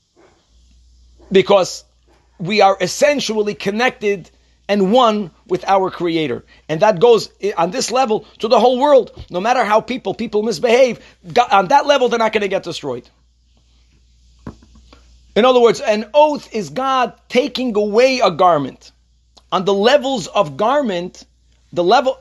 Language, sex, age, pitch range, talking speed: English, male, 40-59, 155-225 Hz, 145 wpm